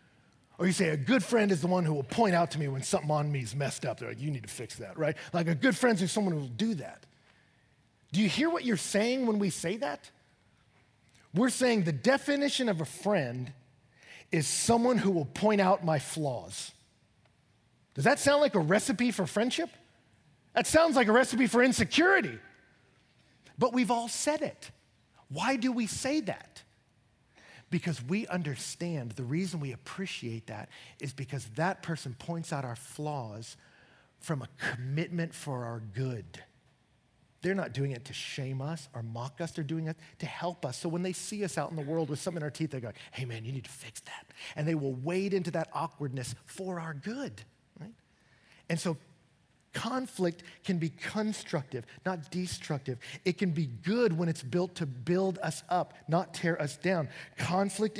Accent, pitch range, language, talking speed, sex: American, 130-190 Hz, English, 190 wpm, male